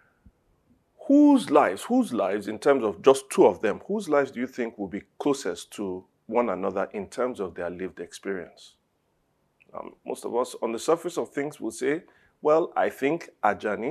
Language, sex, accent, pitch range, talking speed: English, male, Nigerian, 105-140 Hz, 190 wpm